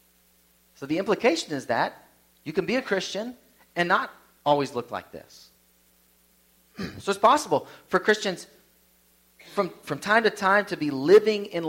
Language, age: Russian, 40-59